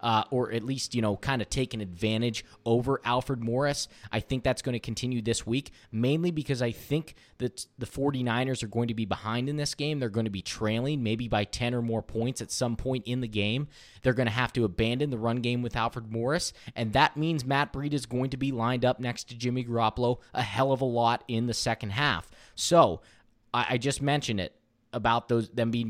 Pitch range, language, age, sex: 110-130 Hz, English, 20-39, male